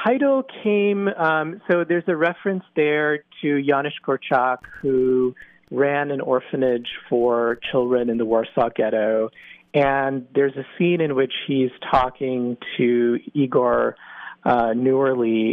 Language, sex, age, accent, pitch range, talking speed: English, male, 40-59, American, 120-150 Hz, 130 wpm